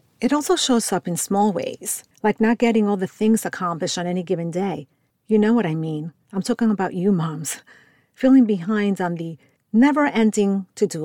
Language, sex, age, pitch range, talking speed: English, female, 50-69, 170-220 Hz, 185 wpm